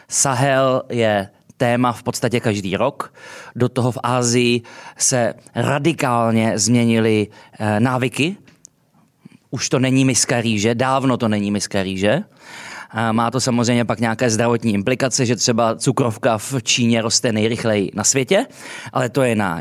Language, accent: Czech, native